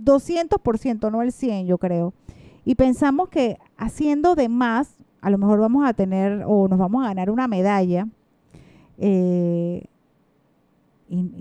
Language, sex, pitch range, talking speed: Spanish, female, 185-245 Hz, 135 wpm